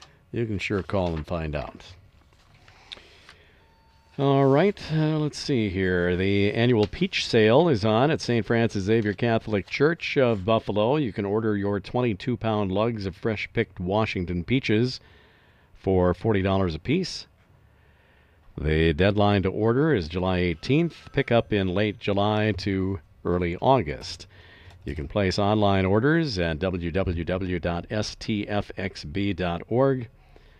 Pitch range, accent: 90-115 Hz, American